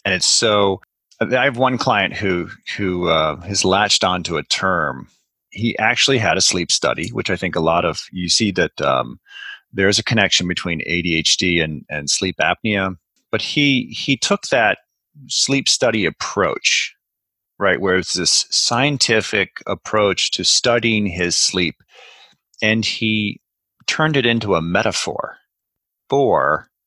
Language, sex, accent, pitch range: English, male, American, 95-135 Hz